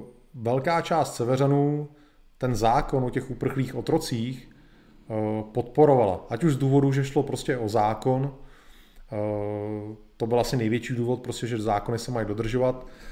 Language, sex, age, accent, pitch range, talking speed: Czech, male, 30-49, native, 110-130 Hz, 135 wpm